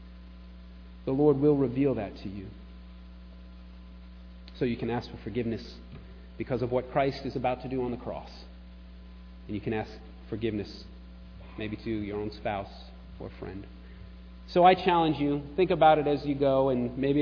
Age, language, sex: 30-49, English, male